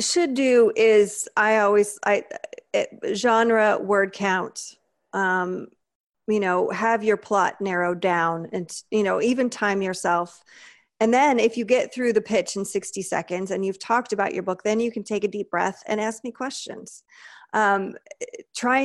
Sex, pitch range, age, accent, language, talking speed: female, 190-230 Hz, 40-59, American, English, 170 wpm